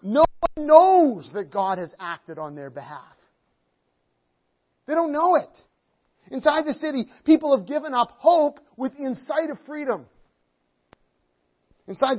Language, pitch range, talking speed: English, 195-295 Hz, 130 wpm